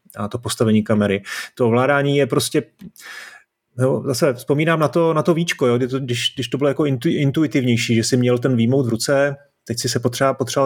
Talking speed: 195 wpm